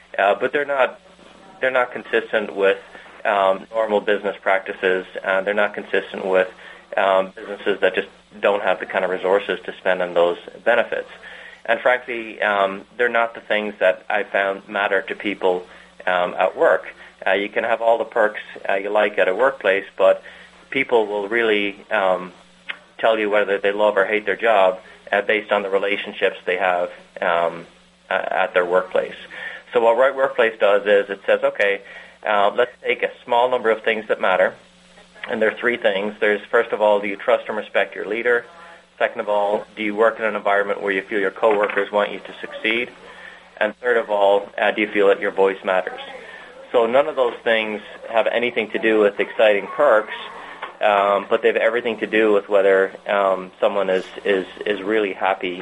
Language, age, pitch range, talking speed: English, 30-49, 100-130 Hz, 195 wpm